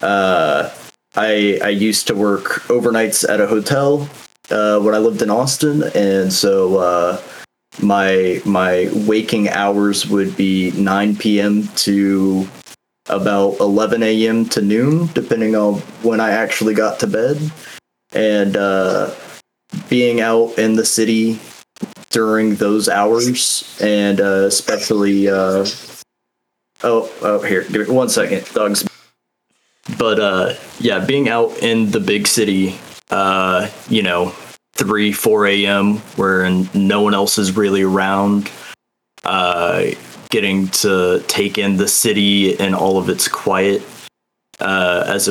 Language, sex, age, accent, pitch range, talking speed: English, male, 30-49, American, 95-110 Hz, 130 wpm